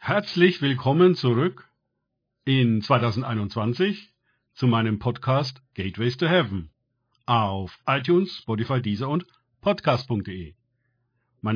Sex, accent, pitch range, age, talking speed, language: male, German, 115-140 Hz, 50-69, 95 wpm, German